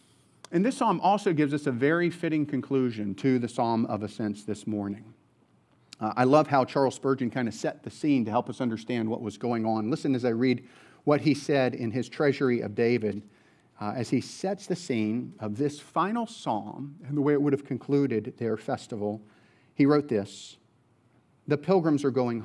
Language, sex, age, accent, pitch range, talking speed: English, male, 40-59, American, 115-140 Hz, 200 wpm